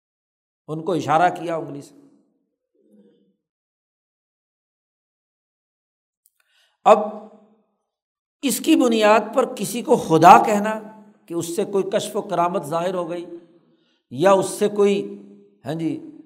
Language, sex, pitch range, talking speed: Urdu, male, 155-200 Hz, 110 wpm